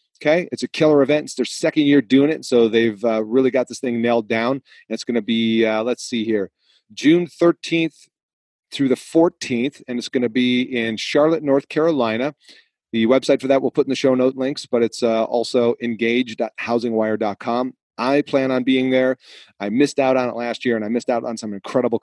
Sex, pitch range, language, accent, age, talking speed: male, 110-130 Hz, English, American, 30-49, 205 wpm